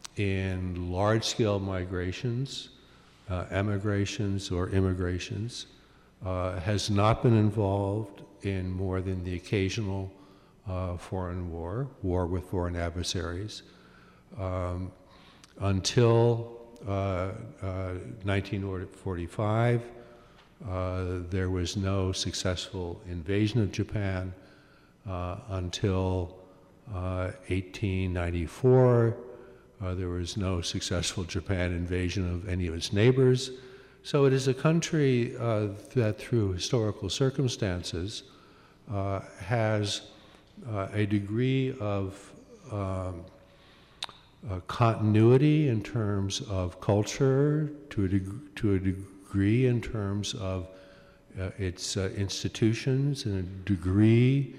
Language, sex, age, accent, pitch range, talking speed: English, male, 60-79, American, 95-115 Hz, 100 wpm